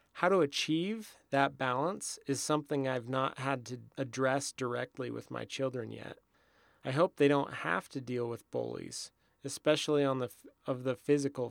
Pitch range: 130-155 Hz